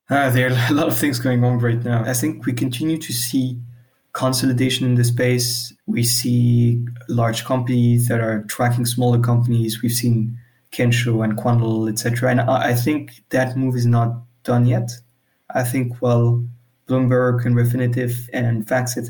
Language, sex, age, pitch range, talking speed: English, male, 20-39, 120-130 Hz, 170 wpm